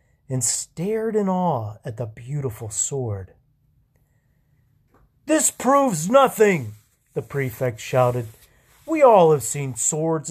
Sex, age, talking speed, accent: male, 40-59, 110 wpm, American